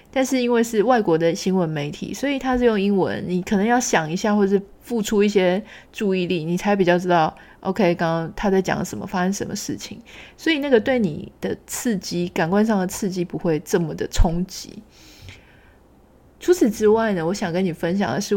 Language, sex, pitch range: Chinese, female, 170-205 Hz